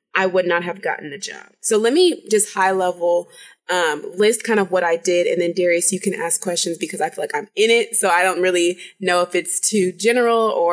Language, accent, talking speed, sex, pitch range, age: English, American, 245 wpm, female, 185-245 Hz, 20-39